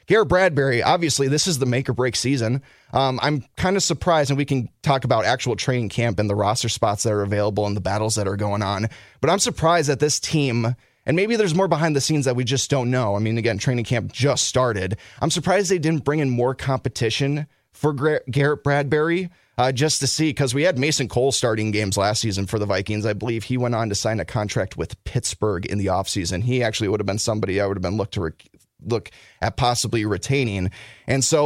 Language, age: English, 30-49